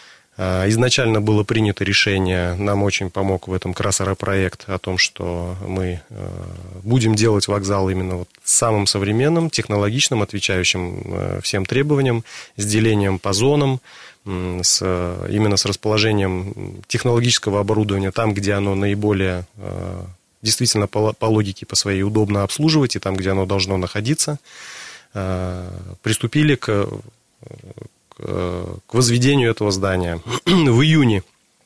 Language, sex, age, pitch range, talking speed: Russian, male, 30-49, 95-115 Hz, 110 wpm